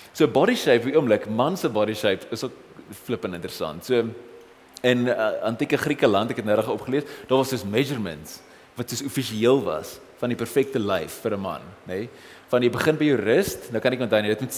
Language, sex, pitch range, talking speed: English, male, 110-150 Hz, 210 wpm